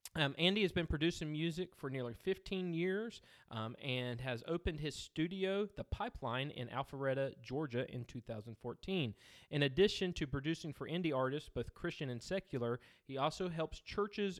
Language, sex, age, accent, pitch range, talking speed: English, male, 30-49, American, 120-170 Hz, 160 wpm